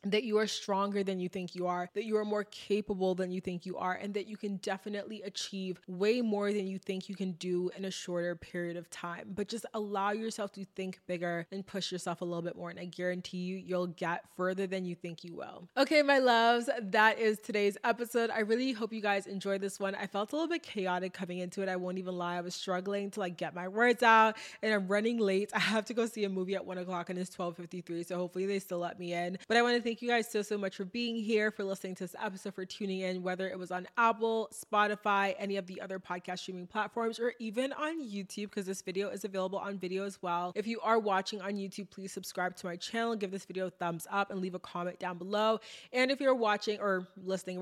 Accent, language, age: American, English, 20-39